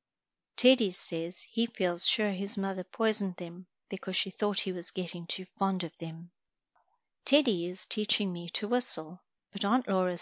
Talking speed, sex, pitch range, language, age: 165 wpm, female, 175-215 Hz, English, 40-59